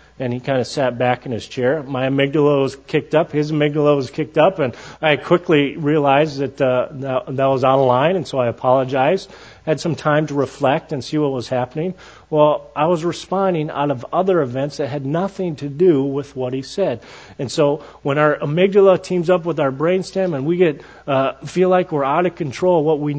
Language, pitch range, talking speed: English, 135-180 Hz, 215 wpm